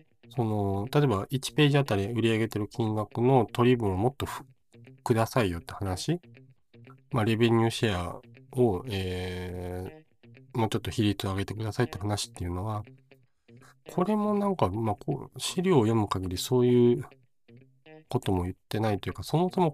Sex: male